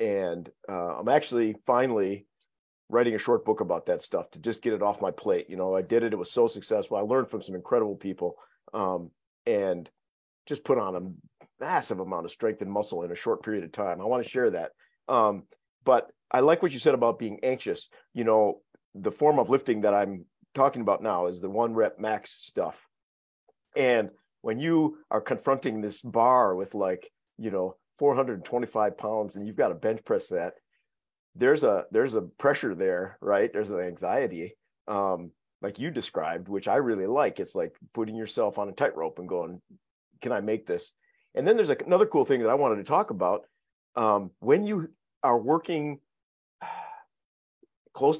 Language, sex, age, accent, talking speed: English, male, 50-69, American, 190 wpm